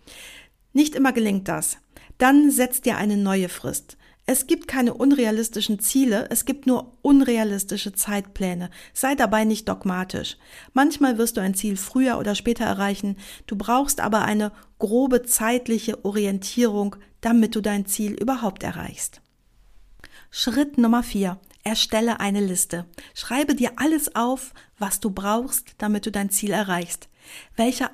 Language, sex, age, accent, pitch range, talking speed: German, female, 50-69, German, 205-250 Hz, 140 wpm